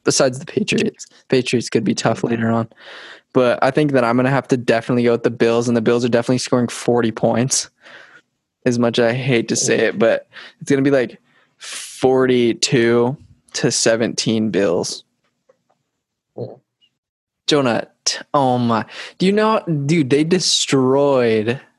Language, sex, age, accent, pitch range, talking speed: English, male, 20-39, American, 115-140 Hz, 160 wpm